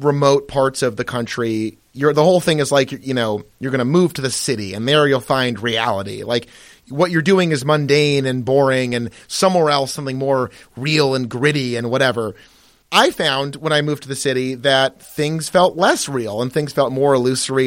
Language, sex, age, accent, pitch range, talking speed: English, male, 30-49, American, 125-155 Hz, 210 wpm